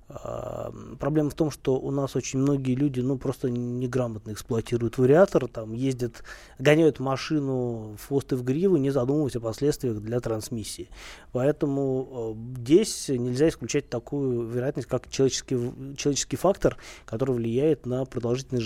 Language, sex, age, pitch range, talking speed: Russian, male, 20-39, 120-145 Hz, 130 wpm